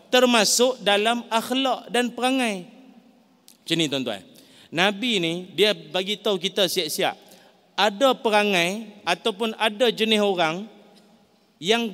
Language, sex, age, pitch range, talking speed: Malay, male, 40-59, 185-250 Hz, 110 wpm